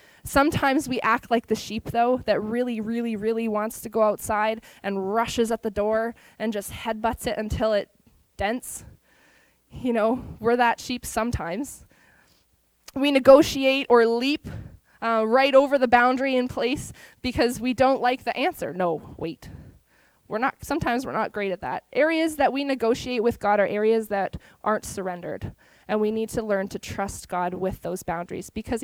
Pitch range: 215-265 Hz